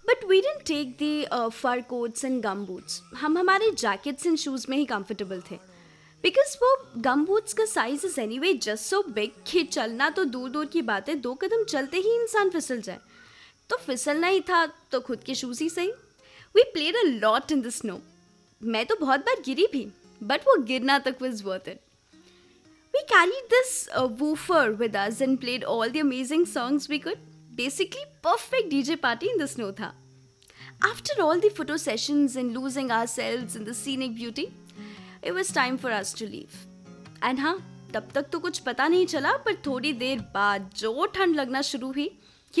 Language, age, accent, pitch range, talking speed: English, 20-39, Indian, 230-335 Hz, 175 wpm